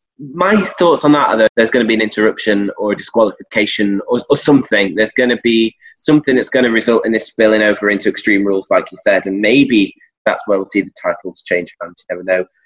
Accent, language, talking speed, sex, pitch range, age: British, English, 230 wpm, male, 110-155 Hz, 20-39